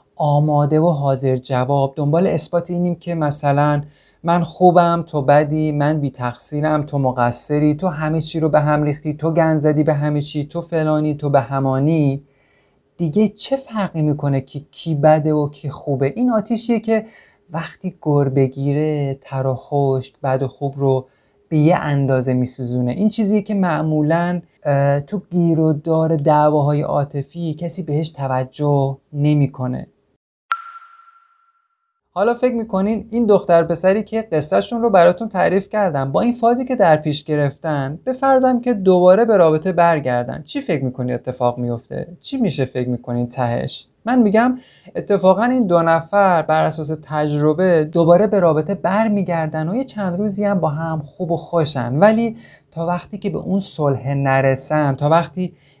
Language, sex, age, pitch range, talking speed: Persian, male, 30-49, 140-190 Hz, 150 wpm